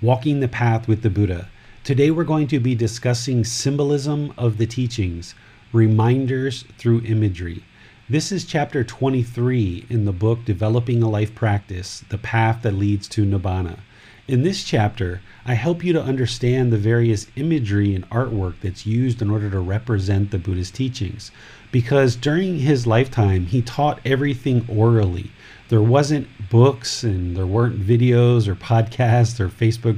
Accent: American